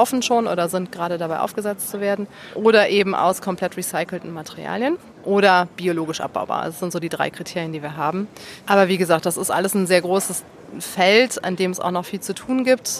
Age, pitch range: 30-49, 180-210 Hz